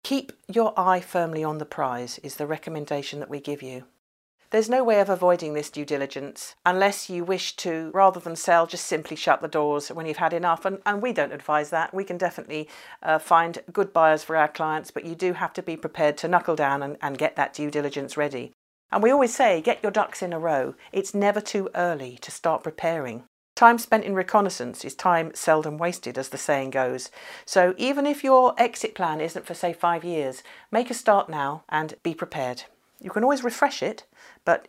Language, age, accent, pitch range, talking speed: English, 50-69, British, 155-190 Hz, 215 wpm